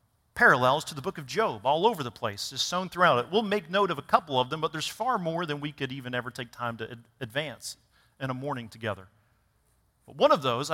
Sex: male